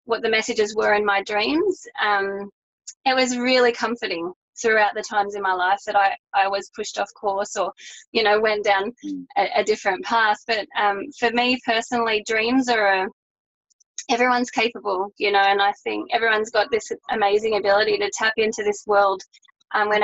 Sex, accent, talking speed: female, Australian, 185 wpm